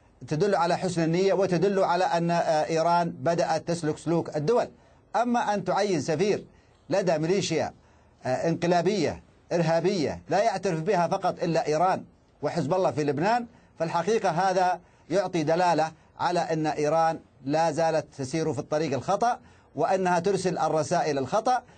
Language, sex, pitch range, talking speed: Arabic, male, 160-190 Hz, 130 wpm